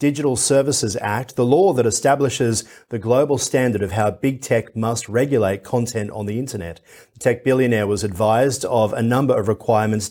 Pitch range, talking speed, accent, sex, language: 105-135 Hz, 180 wpm, Australian, male, English